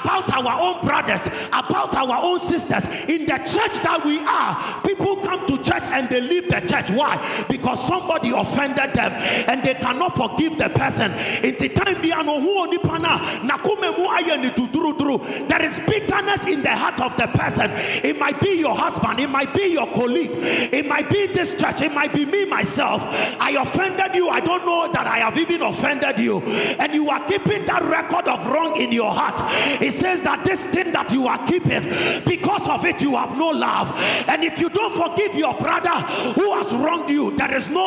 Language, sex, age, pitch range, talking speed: English, male, 40-59, 290-370 Hz, 190 wpm